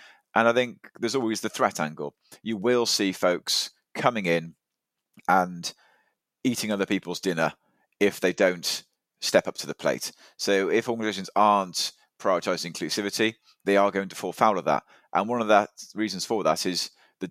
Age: 30-49